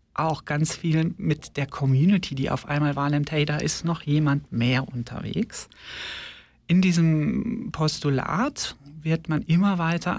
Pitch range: 140-165 Hz